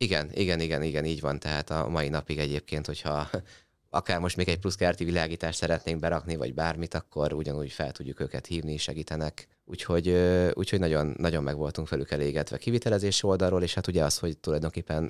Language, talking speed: Hungarian, 180 wpm